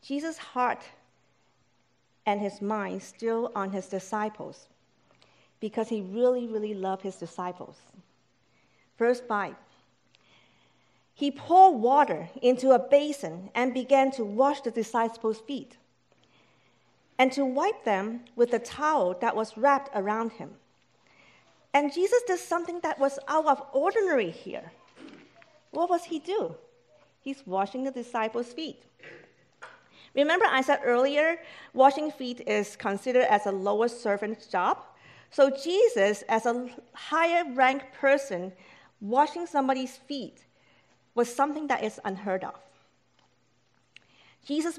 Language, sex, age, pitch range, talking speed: English, female, 50-69, 210-280 Hz, 125 wpm